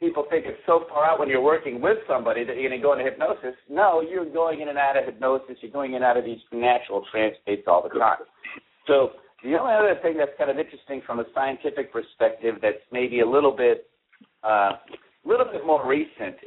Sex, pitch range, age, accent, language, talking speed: male, 120-180 Hz, 50-69, American, English, 220 wpm